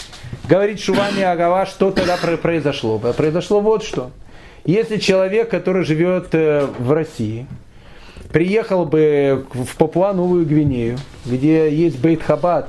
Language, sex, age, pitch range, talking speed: Russian, male, 30-49, 145-195 Hz, 115 wpm